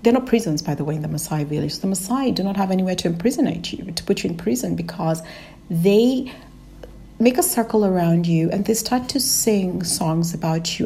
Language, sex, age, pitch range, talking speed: English, female, 60-79, 170-225 Hz, 215 wpm